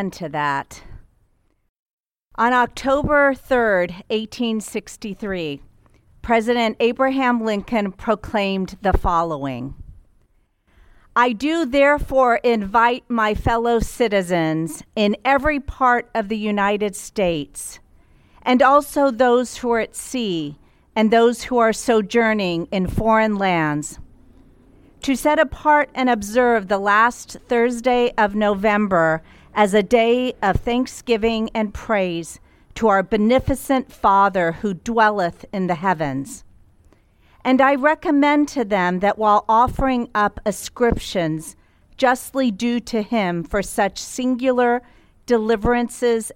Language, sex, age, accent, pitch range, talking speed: English, female, 50-69, American, 185-245 Hz, 110 wpm